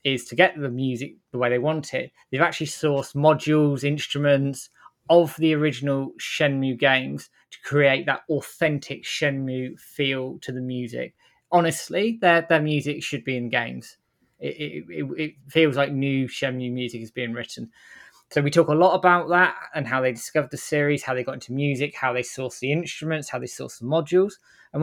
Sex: male